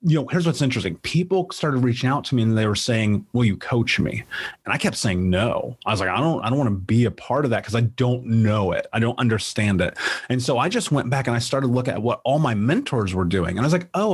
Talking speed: 295 wpm